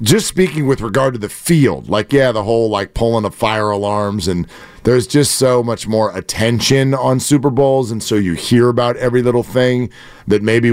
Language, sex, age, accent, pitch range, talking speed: English, male, 40-59, American, 115-155 Hz, 200 wpm